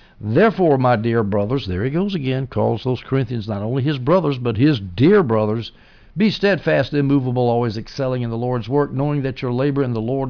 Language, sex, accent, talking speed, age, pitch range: English, male, American, 205 wpm, 60-79, 115-145 Hz